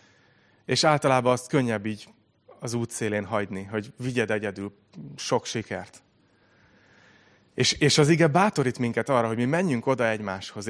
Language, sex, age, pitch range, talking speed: Hungarian, male, 30-49, 110-135 Hz, 140 wpm